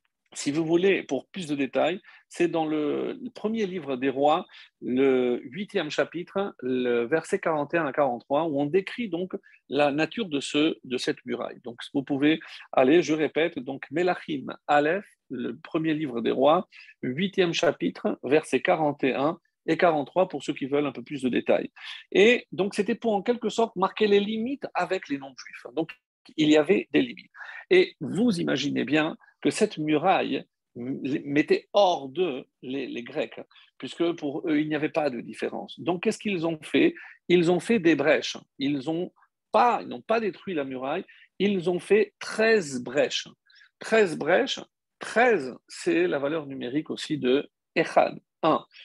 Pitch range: 145-215 Hz